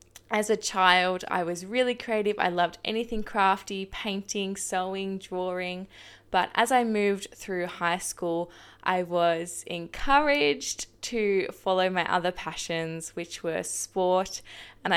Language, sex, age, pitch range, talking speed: English, female, 10-29, 170-210 Hz, 130 wpm